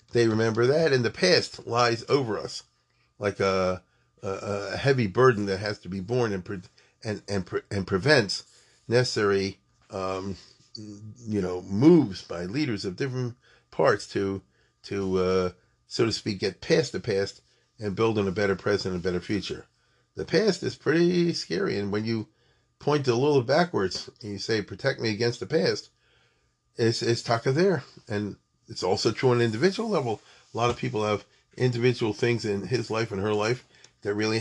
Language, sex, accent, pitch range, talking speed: English, male, American, 100-125 Hz, 180 wpm